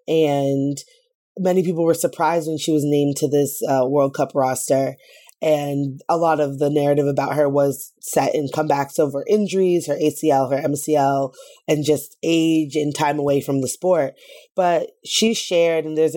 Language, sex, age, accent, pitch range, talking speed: English, female, 20-39, American, 145-170 Hz, 175 wpm